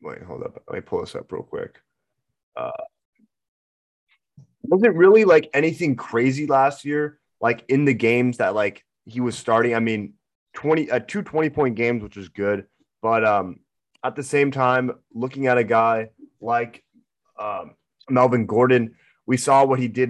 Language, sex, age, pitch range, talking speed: English, male, 20-39, 110-130 Hz, 165 wpm